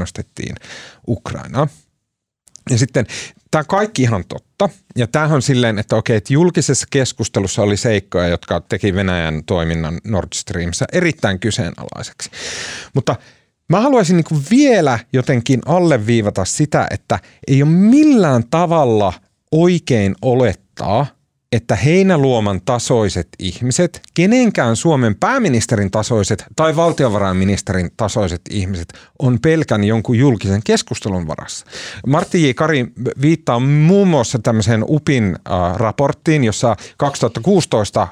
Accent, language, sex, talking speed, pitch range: native, Finnish, male, 110 wpm, 100-145 Hz